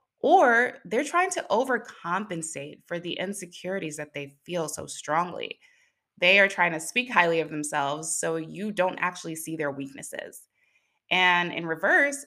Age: 20-39